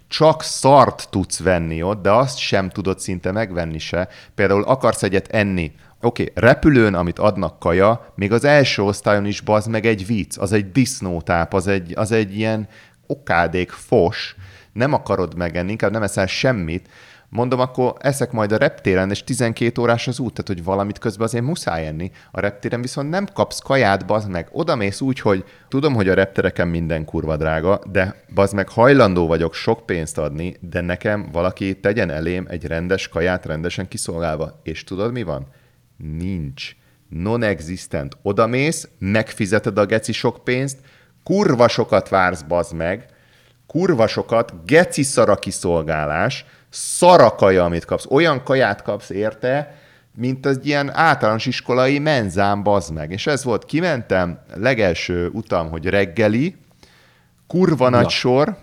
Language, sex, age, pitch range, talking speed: Hungarian, male, 30-49, 90-125 Hz, 155 wpm